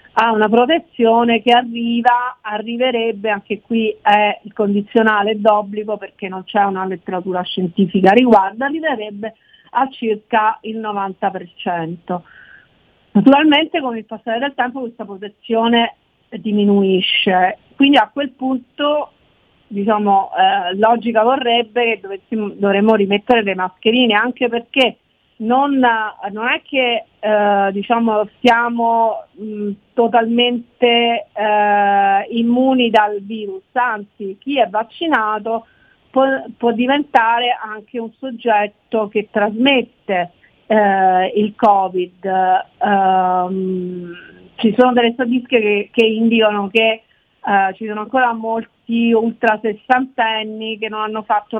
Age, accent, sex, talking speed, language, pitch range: 40-59, native, female, 110 wpm, Italian, 205-240 Hz